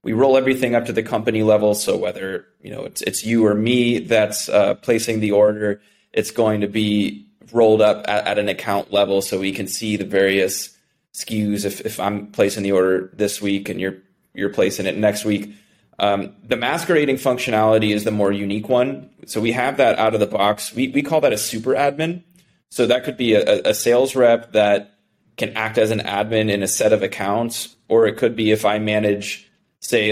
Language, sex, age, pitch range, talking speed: English, male, 20-39, 100-115 Hz, 210 wpm